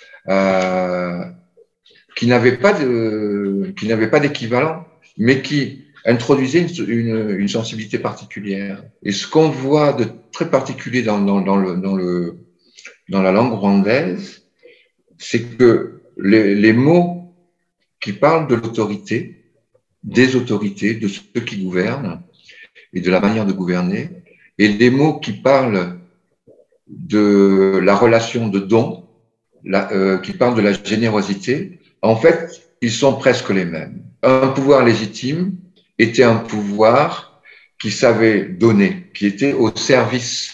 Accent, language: French, English